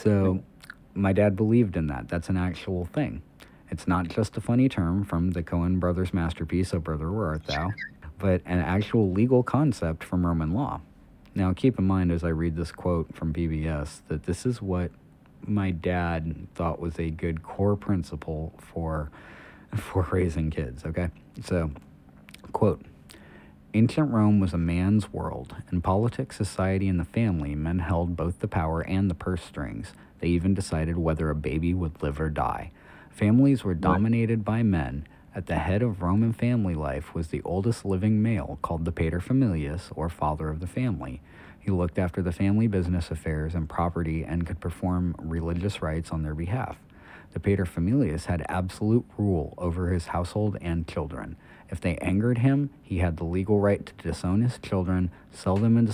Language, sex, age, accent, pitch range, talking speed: English, male, 40-59, American, 85-100 Hz, 175 wpm